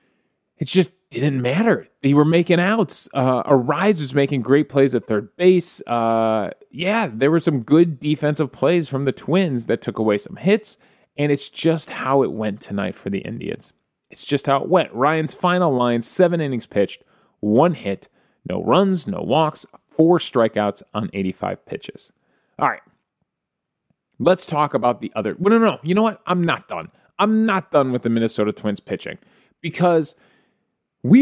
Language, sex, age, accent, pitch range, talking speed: English, male, 30-49, American, 120-185 Hz, 175 wpm